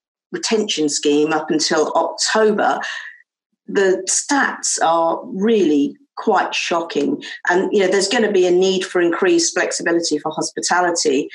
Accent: British